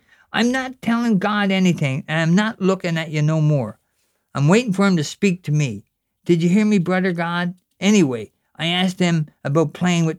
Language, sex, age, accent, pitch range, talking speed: English, male, 50-69, American, 150-195 Hz, 200 wpm